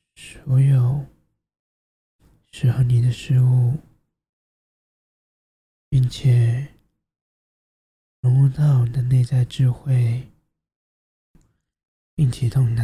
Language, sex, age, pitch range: Chinese, male, 20-39, 120-135 Hz